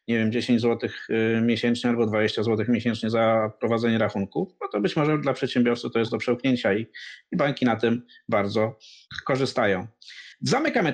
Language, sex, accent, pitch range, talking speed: Polish, male, native, 115-140 Hz, 165 wpm